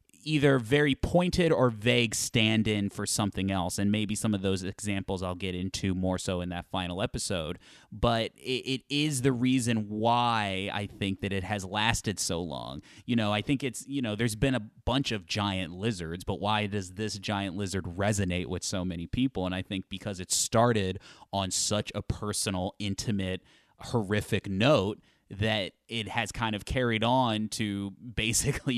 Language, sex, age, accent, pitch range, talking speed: English, male, 30-49, American, 95-120 Hz, 180 wpm